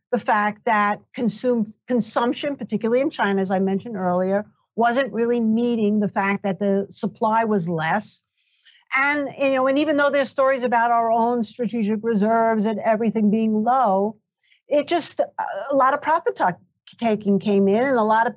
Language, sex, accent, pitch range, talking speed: English, female, American, 205-250 Hz, 165 wpm